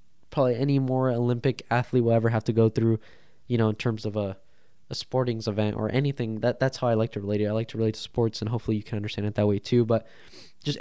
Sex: male